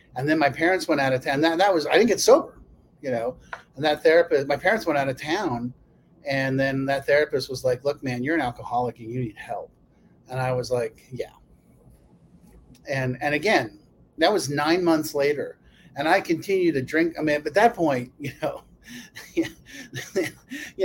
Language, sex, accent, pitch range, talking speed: English, male, American, 130-170 Hz, 195 wpm